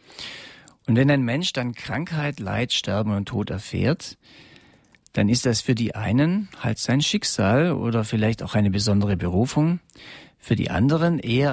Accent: German